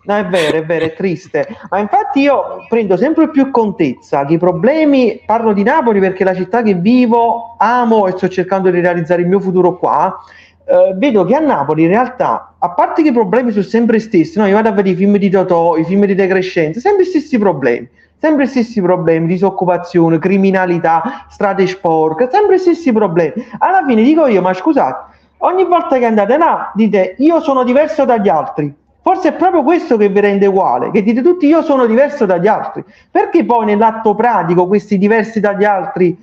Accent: native